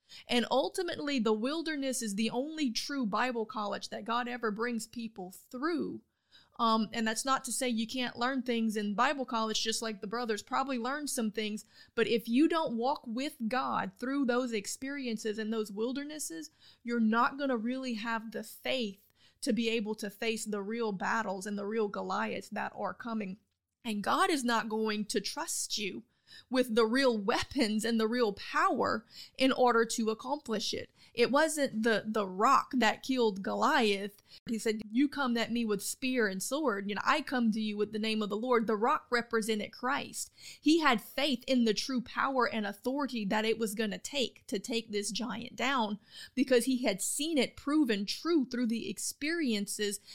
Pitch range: 220-260 Hz